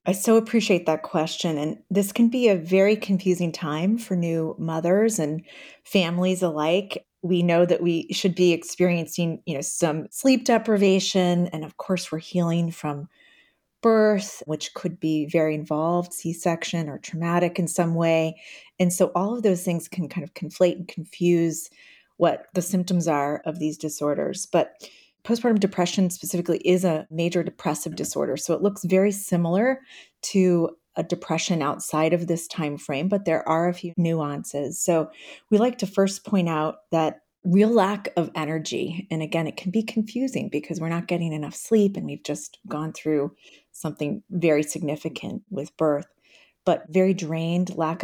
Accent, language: American, English